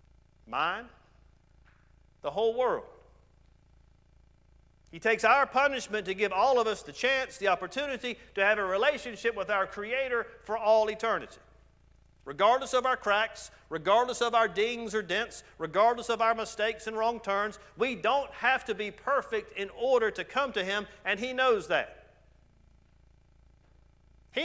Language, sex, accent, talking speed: English, male, American, 150 wpm